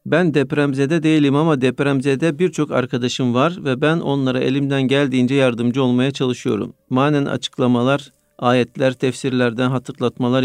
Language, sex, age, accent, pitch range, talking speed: Turkish, male, 50-69, native, 130-150 Hz, 120 wpm